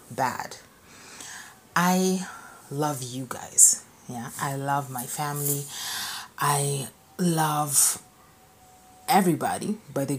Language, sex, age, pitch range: English, female, 30-49, 135-160 Hz